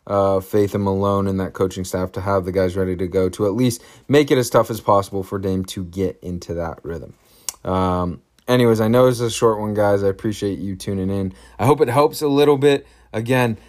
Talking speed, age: 235 wpm, 20-39